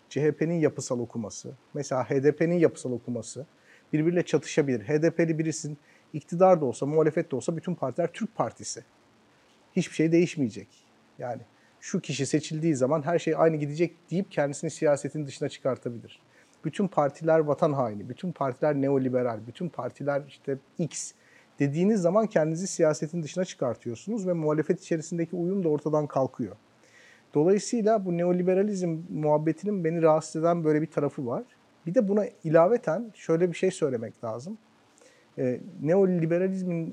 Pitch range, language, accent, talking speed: 130-170 Hz, Turkish, native, 135 wpm